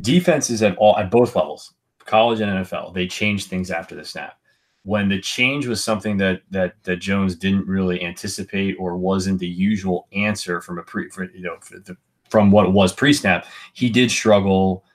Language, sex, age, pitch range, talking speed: English, male, 20-39, 95-110 Hz, 195 wpm